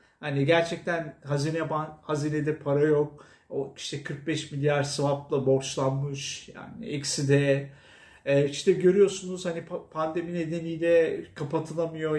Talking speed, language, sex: 115 wpm, Turkish, male